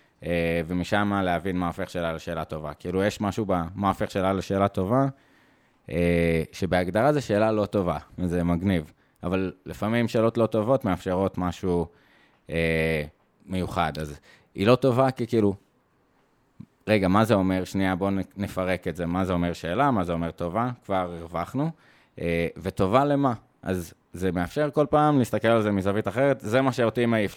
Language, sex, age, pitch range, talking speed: Hebrew, male, 20-39, 90-120 Hz, 165 wpm